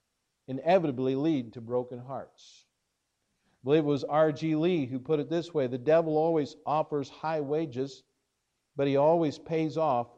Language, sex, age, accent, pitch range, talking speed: English, male, 50-69, American, 135-180 Hz, 160 wpm